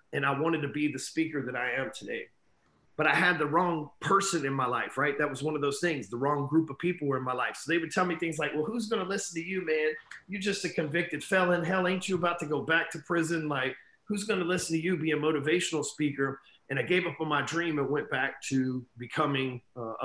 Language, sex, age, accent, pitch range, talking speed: English, male, 40-59, American, 140-165 Hz, 265 wpm